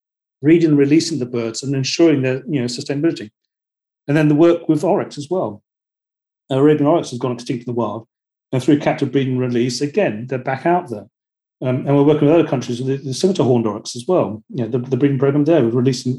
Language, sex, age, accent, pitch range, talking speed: English, male, 40-59, British, 130-165 Hz, 210 wpm